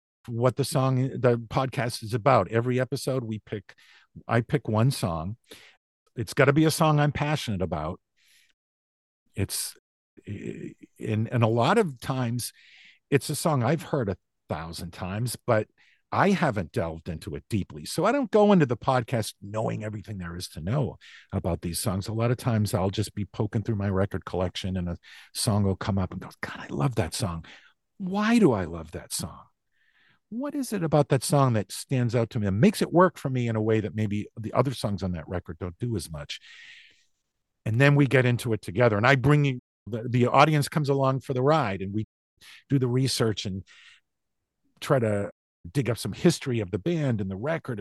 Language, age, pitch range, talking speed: English, 50-69, 95-135 Hz, 205 wpm